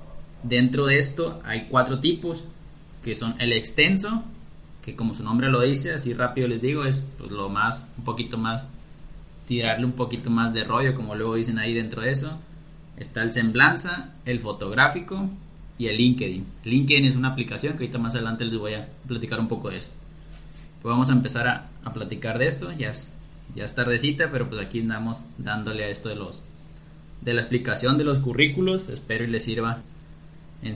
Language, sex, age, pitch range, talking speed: Spanish, male, 20-39, 115-140 Hz, 195 wpm